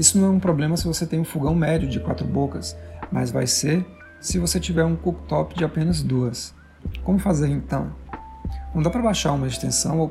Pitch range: 135-180 Hz